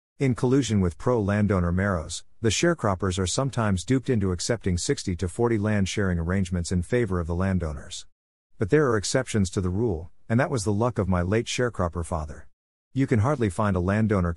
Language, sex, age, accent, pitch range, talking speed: English, male, 50-69, American, 90-115 Hz, 185 wpm